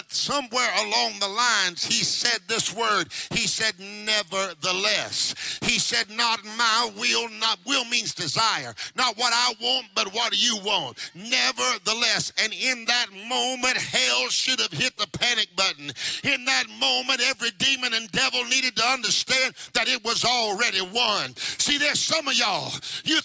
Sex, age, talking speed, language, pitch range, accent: male, 50-69, 155 wpm, English, 215-270 Hz, American